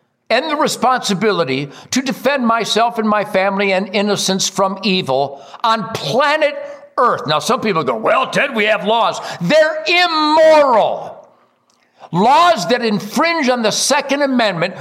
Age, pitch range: 60-79, 185-265 Hz